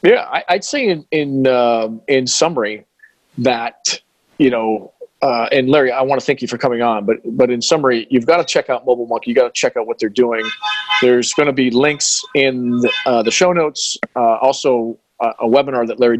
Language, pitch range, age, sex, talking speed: English, 110-135 Hz, 40-59, male, 215 wpm